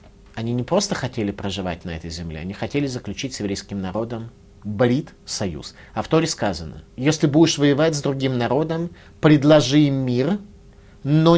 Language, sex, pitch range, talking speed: Russian, male, 100-155 Hz, 135 wpm